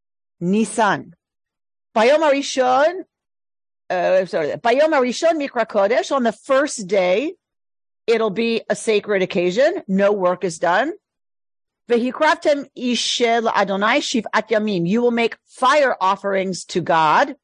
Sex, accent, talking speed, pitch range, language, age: female, American, 70 wpm, 205-280 Hz, English, 40-59